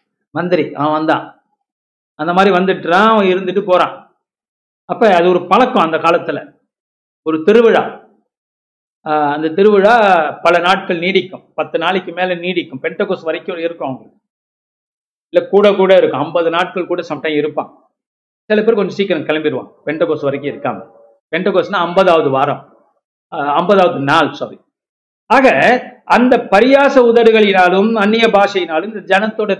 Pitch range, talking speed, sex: 170-220 Hz, 120 wpm, male